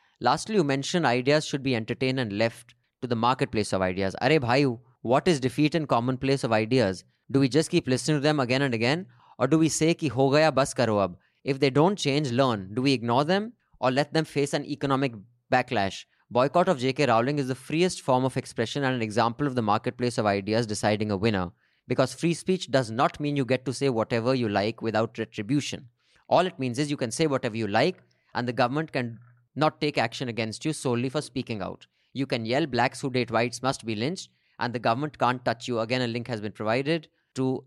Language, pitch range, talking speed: English, 115-145 Hz, 225 wpm